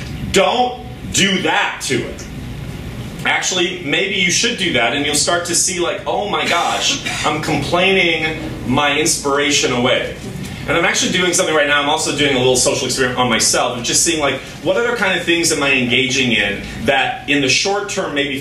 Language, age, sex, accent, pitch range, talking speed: English, 30-49, male, American, 125-170 Hz, 190 wpm